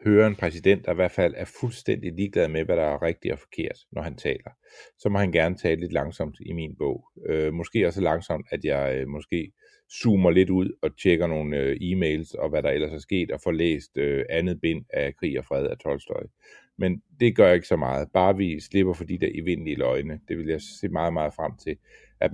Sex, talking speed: male, 235 wpm